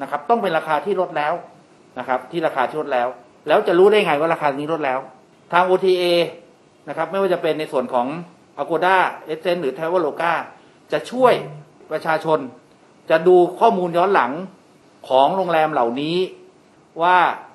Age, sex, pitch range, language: 60-79, male, 145-185 Hz, Thai